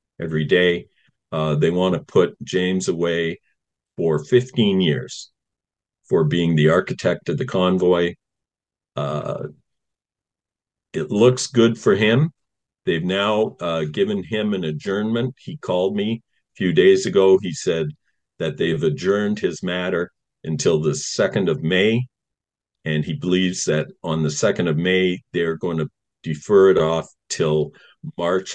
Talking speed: 145 wpm